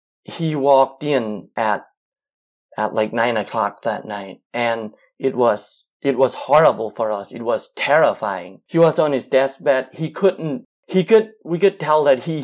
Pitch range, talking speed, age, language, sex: 115-160 Hz, 170 wpm, 30-49, English, male